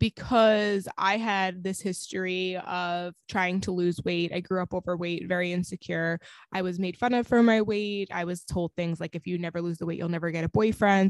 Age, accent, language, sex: 20-39, American, English, female